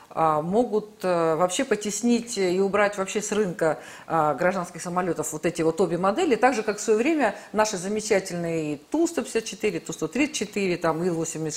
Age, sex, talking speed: 50-69, female, 135 wpm